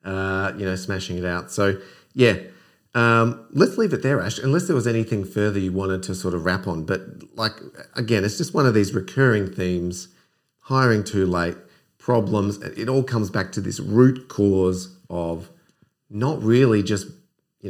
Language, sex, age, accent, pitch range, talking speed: English, male, 40-59, Australian, 95-125 Hz, 180 wpm